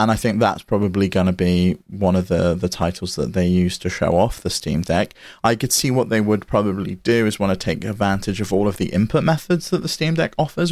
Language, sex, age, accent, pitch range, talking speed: English, male, 30-49, British, 95-115 Hz, 260 wpm